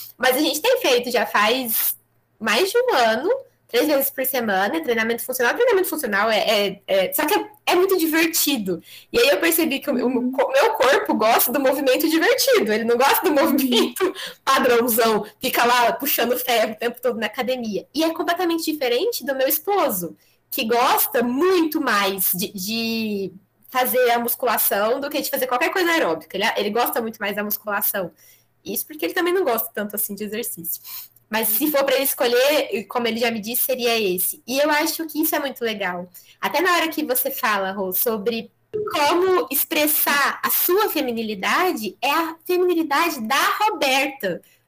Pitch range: 230-325 Hz